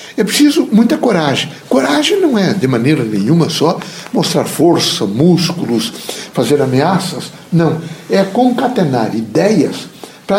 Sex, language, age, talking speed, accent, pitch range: male, Portuguese, 60-79, 120 wpm, Brazilian, 160-220 Hz